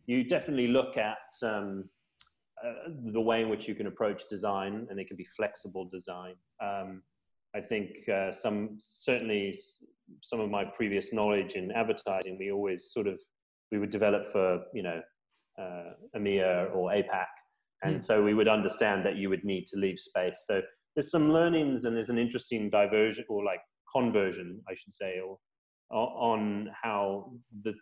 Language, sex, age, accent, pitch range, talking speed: English, male, 30-49, British, 100-120 Hz, 170 wpm